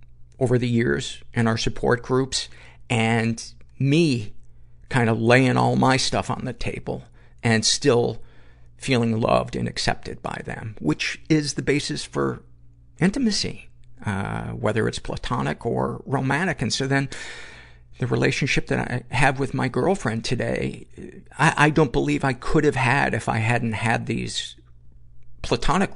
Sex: male